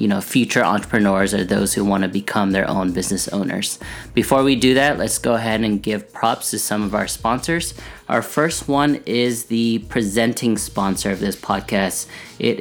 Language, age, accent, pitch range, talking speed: English, 20-39, American, 105-120 Hz, 190 wpm